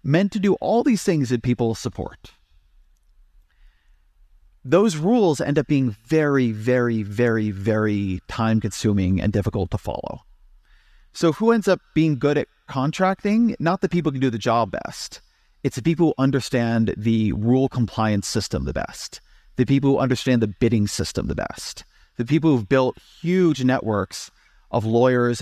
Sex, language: male, English